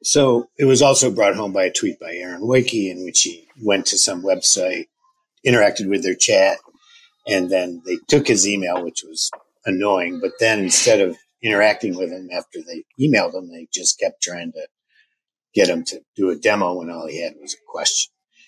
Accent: American